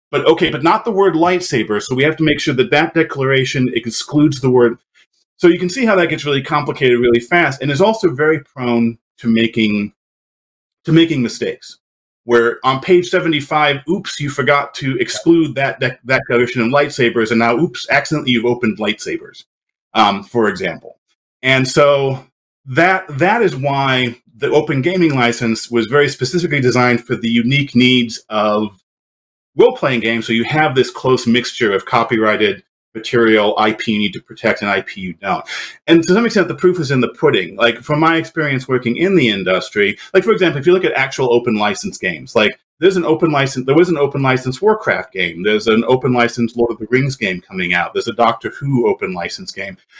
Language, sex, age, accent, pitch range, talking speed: English, male, 40-59, American, 120-165 Hz, 195 wpm